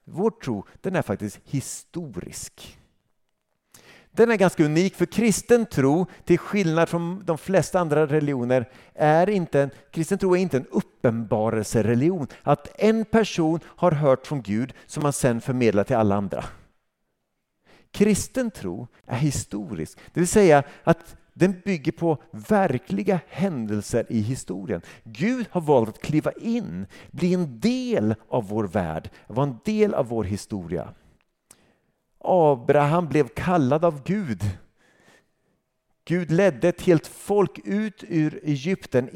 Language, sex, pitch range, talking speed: Swedish, male, 115-180 Hz, 135 wpm